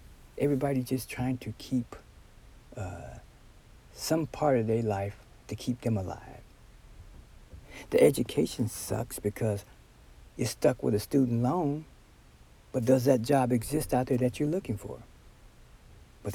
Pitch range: 105-140 Hz